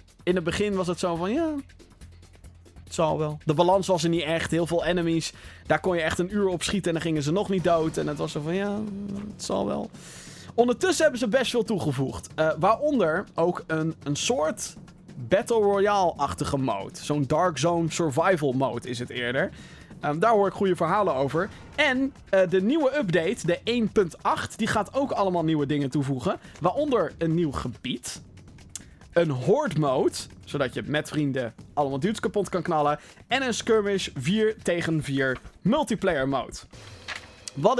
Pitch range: 150-205 Hz